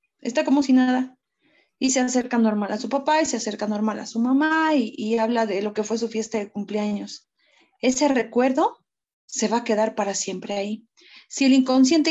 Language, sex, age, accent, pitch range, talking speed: Spanish, female, 30-49, Mexican, 210-260 Hz, 205 wpm